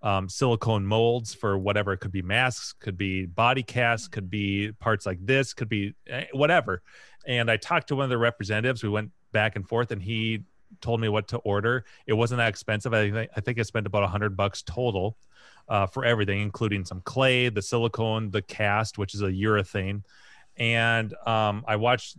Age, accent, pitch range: 30-49, American, 100-120 Hz